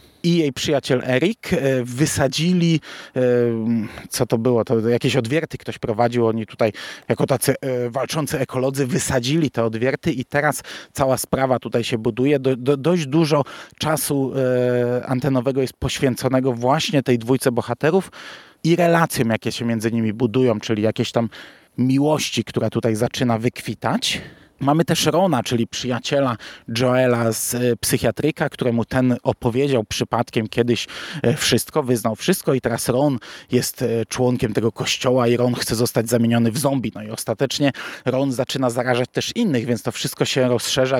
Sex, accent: male, native